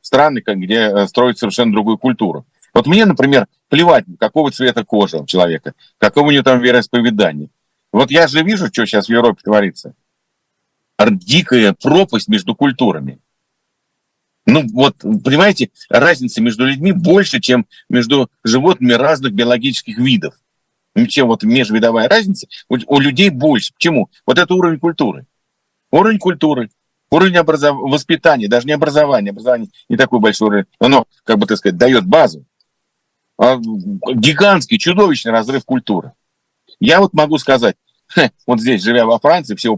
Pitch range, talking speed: 110-175 Hz, 140 wpm